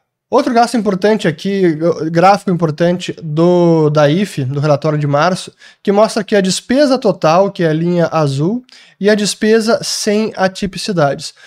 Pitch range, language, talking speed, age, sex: 165-210 Hz, Portuguese, 155 wpm, 20-39, male